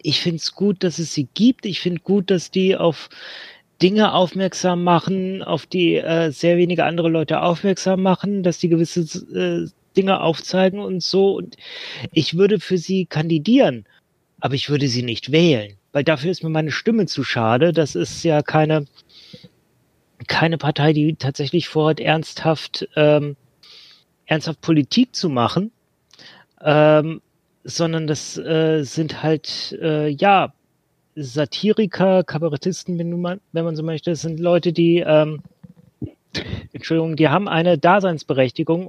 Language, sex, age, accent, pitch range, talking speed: German, male, 30-49, German, 155-180 Hz, 145 wpm